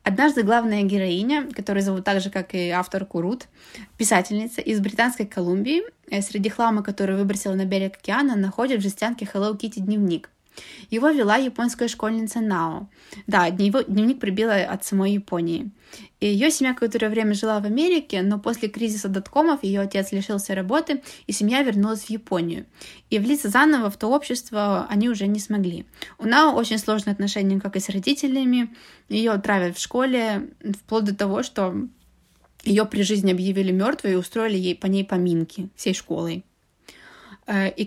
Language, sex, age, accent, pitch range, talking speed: Russian, female, 20-39, native, 200-235 Hz, 160 wpm